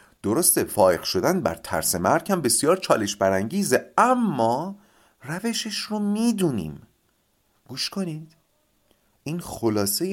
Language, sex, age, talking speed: Persian, male, 40-59, 105 wpm